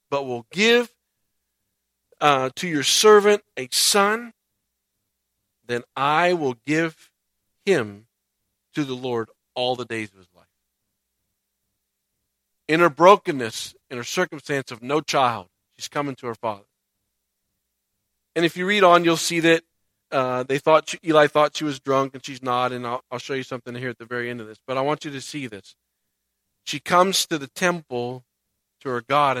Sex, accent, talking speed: male, American, 175 wpm